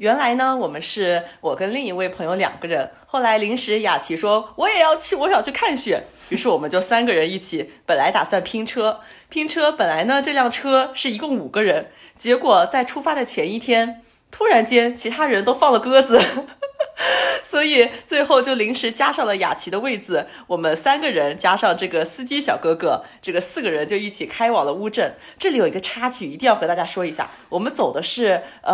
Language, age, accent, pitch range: Chinese, 30-49, native, 185-265 Hz